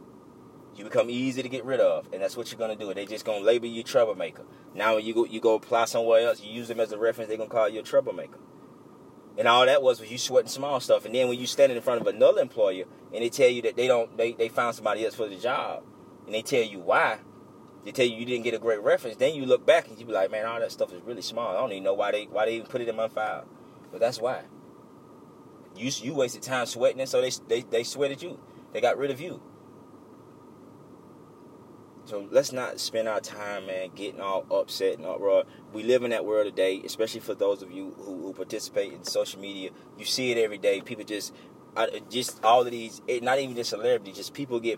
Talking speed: 245 wpm